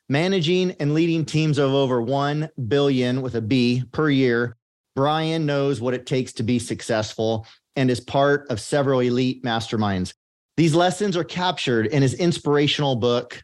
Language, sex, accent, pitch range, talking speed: English, male, American, 125-150 Hz, 155 wpm